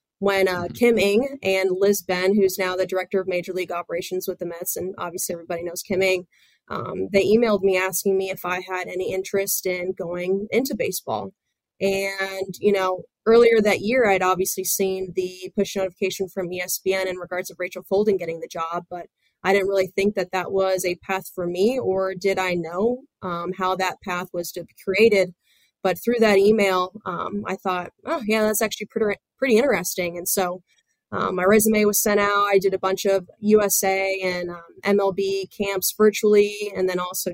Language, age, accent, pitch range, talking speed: English, 20-39, American, 185-205 Hz, 195 wpm